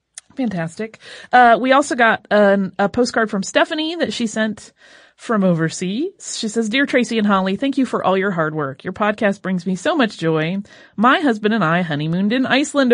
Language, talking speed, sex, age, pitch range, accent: English, 190 wpm, female, 30-49, 185-265 Hz, American